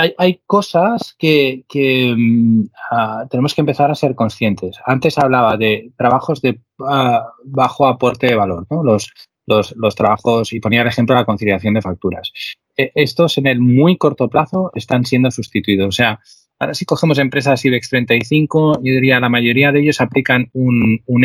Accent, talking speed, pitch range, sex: Spanish, 170 wpm, 110-135 Hz, male